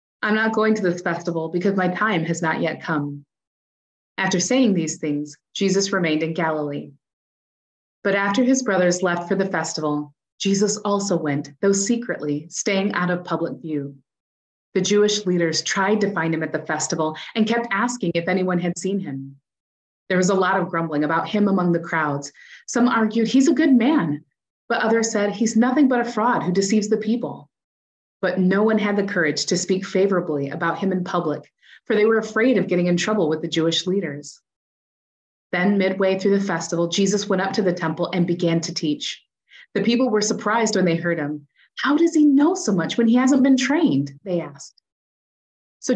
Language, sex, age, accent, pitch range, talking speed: English, female, 30-49, American, 160-215 Hz, 195 wpm